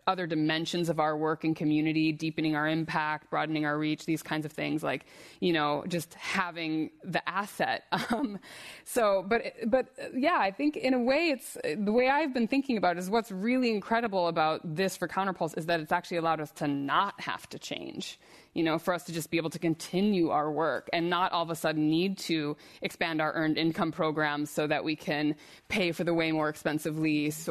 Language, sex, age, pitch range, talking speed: English, female, 20-39, 160-200 Hz, 210 wpm